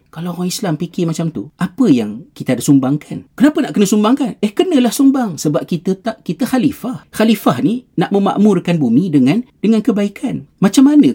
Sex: male